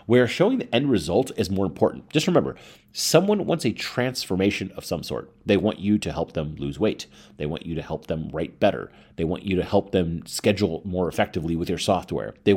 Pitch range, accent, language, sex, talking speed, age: 85-115 Hz, American, English, male, 220 wpm, 30-49